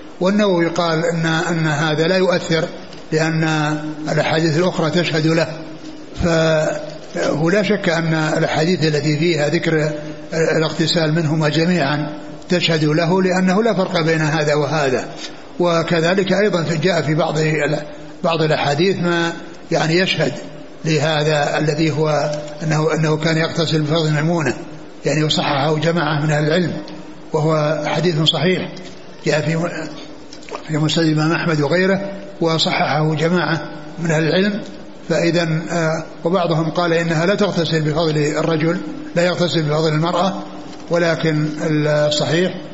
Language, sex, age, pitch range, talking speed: Arabic, male, 60-79, 155-170 Hz, 120 wpm